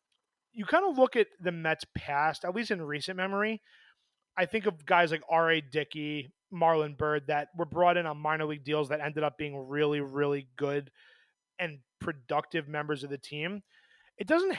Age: 30-49